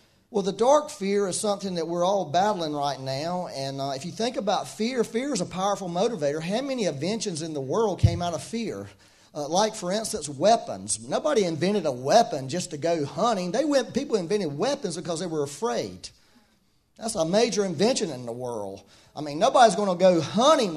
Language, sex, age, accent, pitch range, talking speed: English, male, 40-59, American, 155-225 Hz, 200 wpm